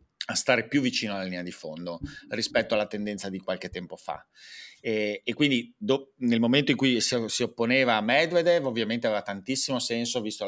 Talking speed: 190 wpm